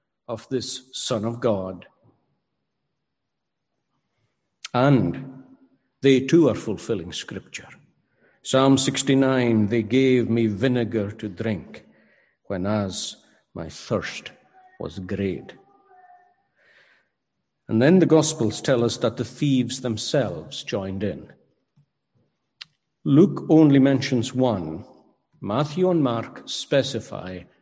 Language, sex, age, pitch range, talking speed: English, male, 50-69, 110-140 Hz, 100 wpm